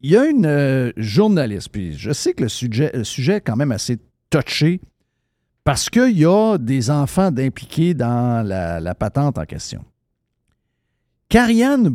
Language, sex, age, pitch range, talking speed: French, male, 50-69, 125-165 Hz, 165 wpm